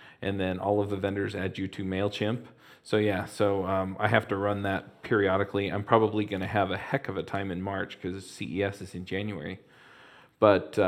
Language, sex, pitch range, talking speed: English, male, 95-110 Hz, 210 wpm